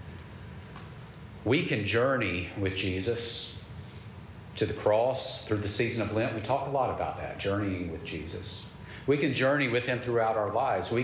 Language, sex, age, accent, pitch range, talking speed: English, male, 40-59, American, 100-130 Hz, 170 wpm